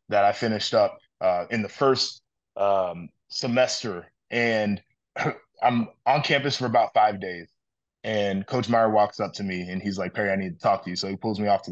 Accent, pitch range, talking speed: American, 100-120 Hz, 210 wpm